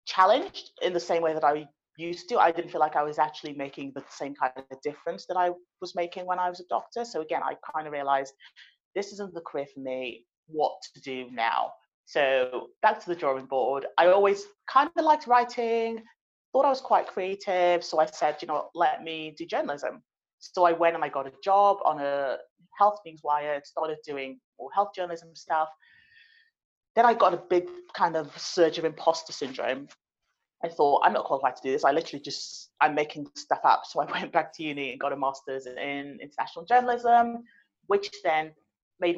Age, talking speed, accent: 30-49, 205 wpm, British